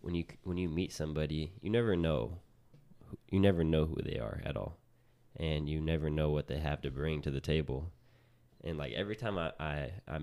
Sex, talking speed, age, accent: male, 210 wpm, 20-39, American